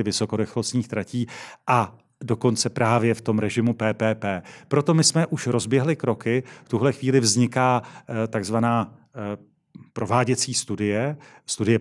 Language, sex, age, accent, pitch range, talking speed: Czech, male, 40-59, native, 115-130 Hz, 115 wpm